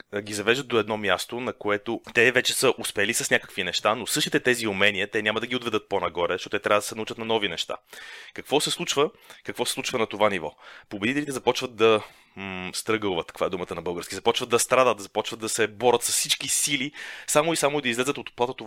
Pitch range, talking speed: 105-130 Hz, 220 wpm